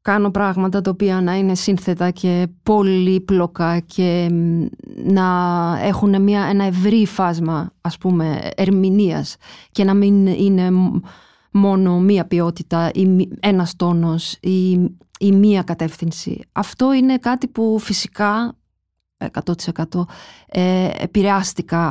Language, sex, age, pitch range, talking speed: Greek, female, 30-49, 180-215 Hz, 110 wpm